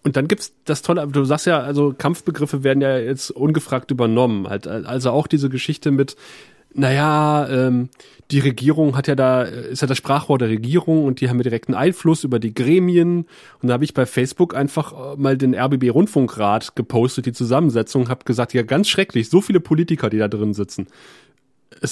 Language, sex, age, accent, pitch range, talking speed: German, male, 30-49, German, 125-160 Hz, 185 wpm